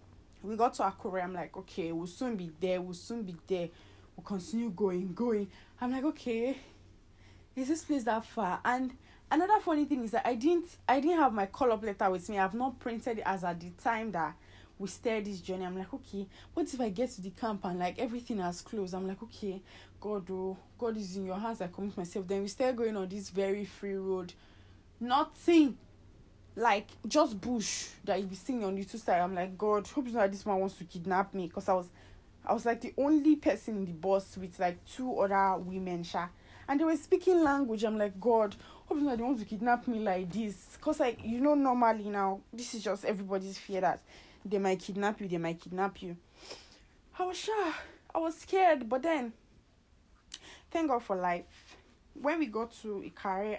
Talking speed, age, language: 215 wpm, 20-39, English